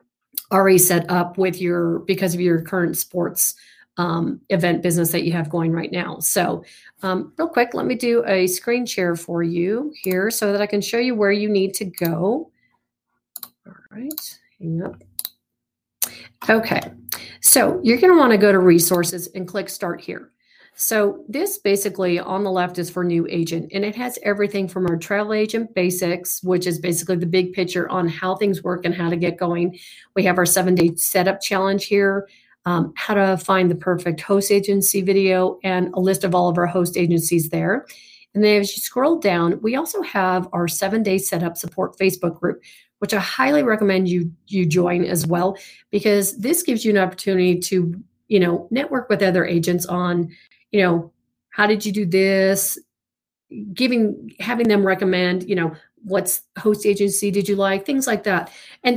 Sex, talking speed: female, 190 wpm